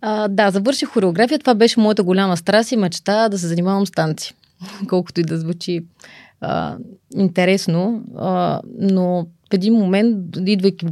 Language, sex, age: Bulgarian, female, 30-49